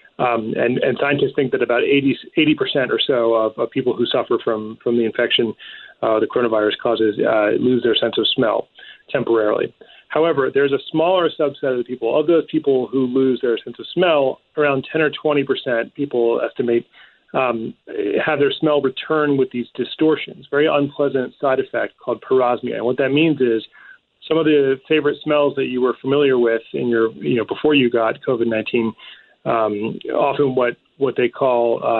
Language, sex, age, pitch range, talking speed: English, male, 30-49, 115-140 Hz, 185 wpm